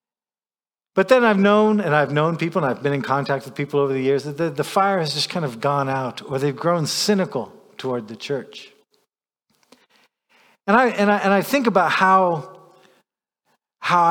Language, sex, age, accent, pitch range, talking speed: English, male, 50-69, American, 130-155 Hz, 190 wpm